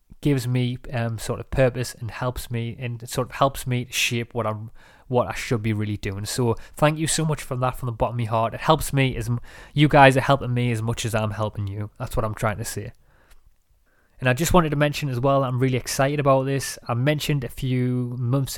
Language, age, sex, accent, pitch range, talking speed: English, 20-39, male, British, 115-130 Hz, 245 wpm